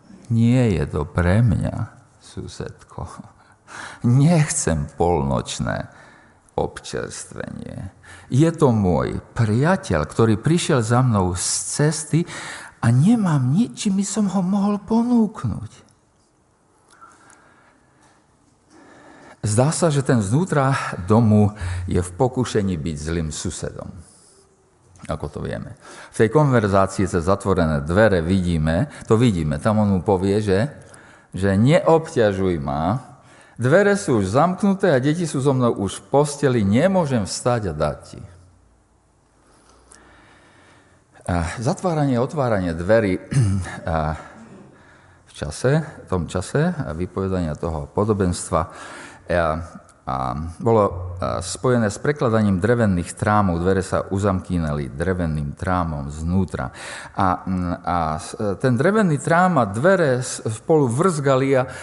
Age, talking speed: 50-69, 110 wpm